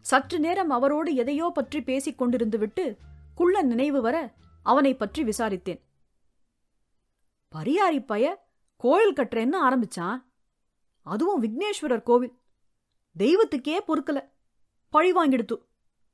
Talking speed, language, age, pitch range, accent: 90 wpm, English, 30-49, 240-335 Hz, Indian